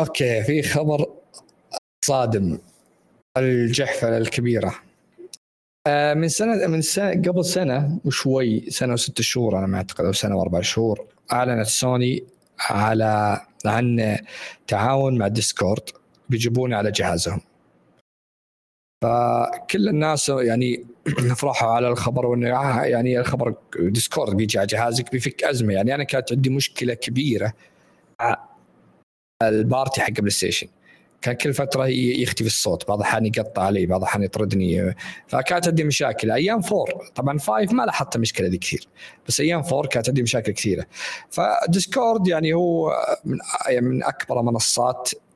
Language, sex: Arabic, male